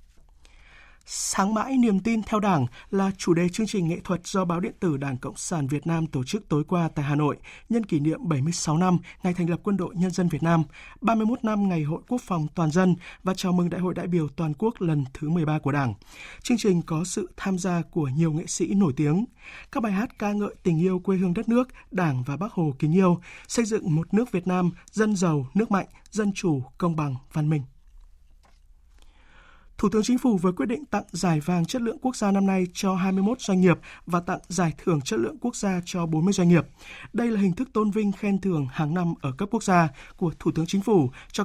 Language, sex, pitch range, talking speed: Vietnamese, male, 160-205 Hz, 235 wpm